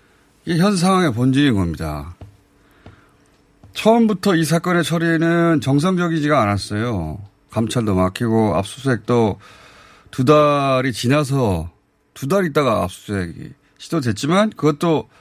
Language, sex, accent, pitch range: Korean, male, native, 100-155 Hz